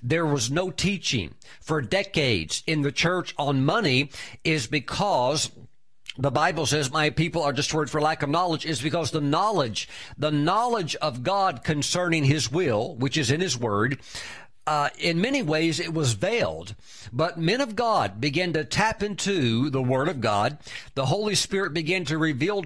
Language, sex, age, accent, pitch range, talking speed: English, male, 50-69, American, 140-180 Hz, 170 wpm